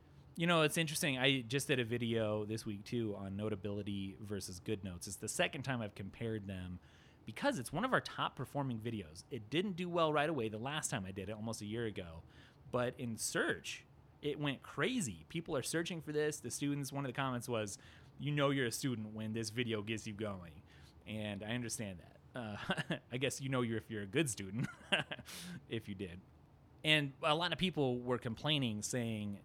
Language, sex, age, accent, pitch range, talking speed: English, male, 30-49, American, 100-130 Hz, 210 wpm